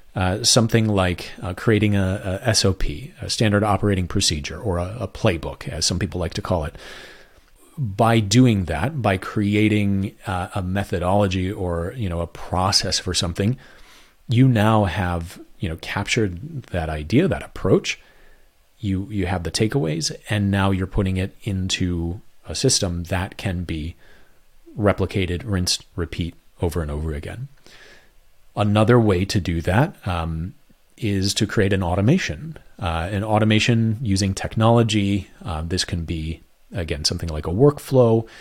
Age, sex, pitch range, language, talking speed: 30-49, male, 90-110 Hz, English, 150 wpm